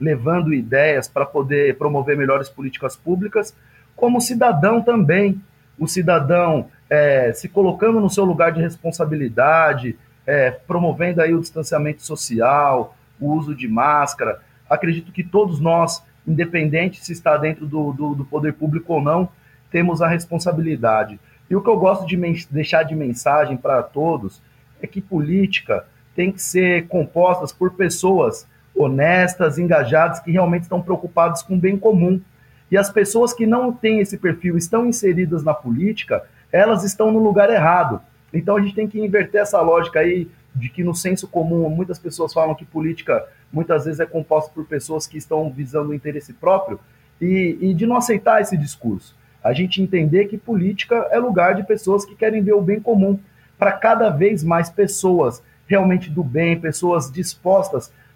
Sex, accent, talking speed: male, Brazilian, 160 wpm